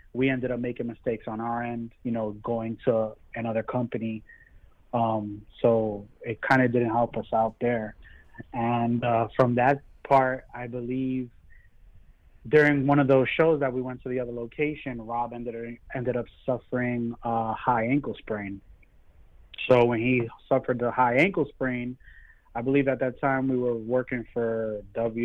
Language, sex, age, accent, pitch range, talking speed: English, male, 30-49, American, 115-130 Hz, 165 wpm